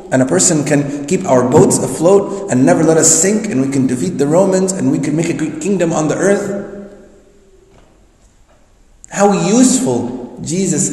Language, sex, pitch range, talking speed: English, male, 115-160 Hz, 175 wpm